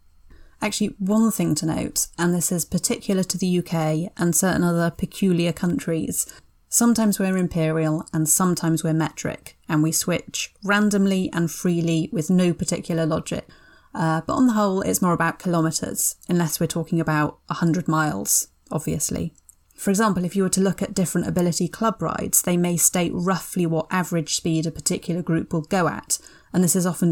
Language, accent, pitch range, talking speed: English, British, 165-195 Hz, 175 wpm